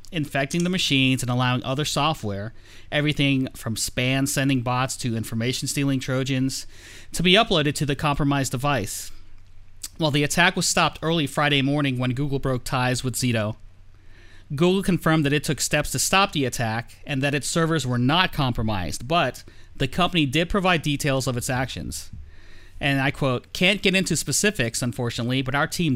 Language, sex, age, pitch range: English, male, 30-49, 115-150 Hz